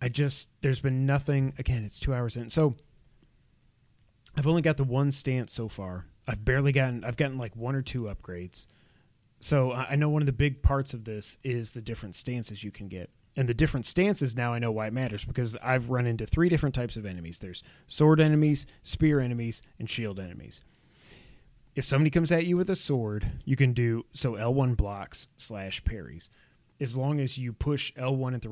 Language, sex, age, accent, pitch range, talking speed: English, male, 30-49, American, 110-135 Hz, 205 wpm